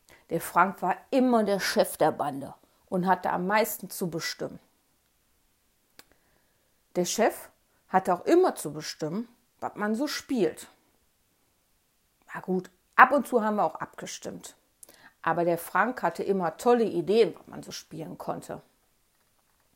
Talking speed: 140 wpm